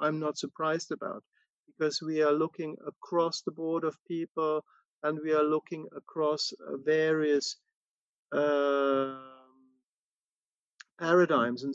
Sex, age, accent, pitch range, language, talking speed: male, 50-69, German, 150-170 Hz, English, 110 wpm